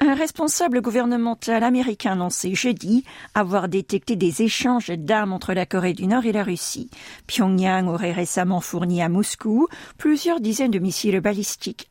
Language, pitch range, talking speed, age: French, 180-240 Hz, 150 wpm, 50-69